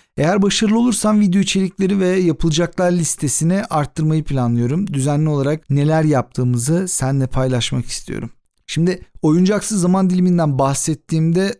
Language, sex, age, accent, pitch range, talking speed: Turkish, male, 50-69, native, 145-195 Hz, 115 wpm